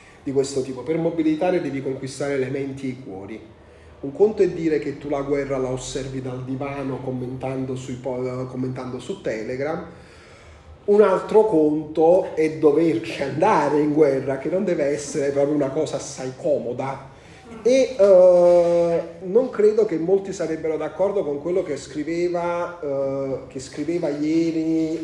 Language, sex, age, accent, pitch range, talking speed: Italian, male, 30-49, native, 130-175 Hz, 140 wpm